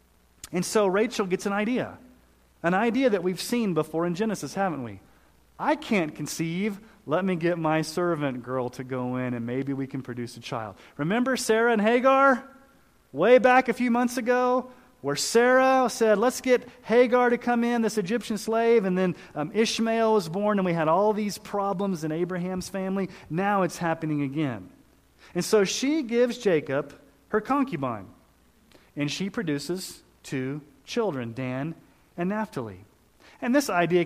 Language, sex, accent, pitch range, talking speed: English, male, American, 145-225 Hz, 165 wpm